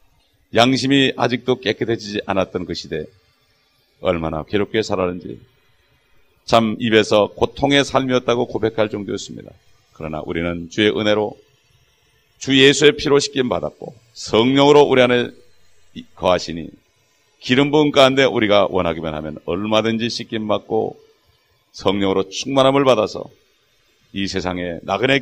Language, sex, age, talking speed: English, male, 40-59, 100 wpm